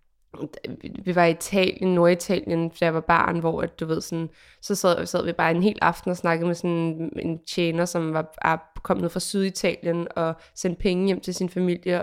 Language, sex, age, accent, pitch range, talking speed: Danish, female, 20-39, native, 170-200 Hz, 205 wpm